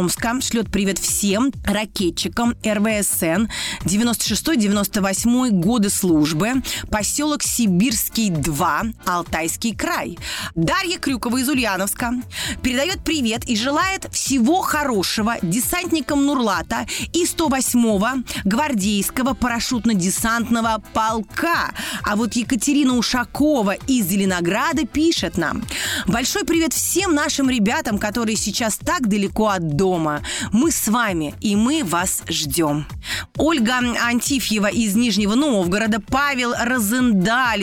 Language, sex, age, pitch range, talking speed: Russian, female, 30-49, 200-255 Hz, 100 wpm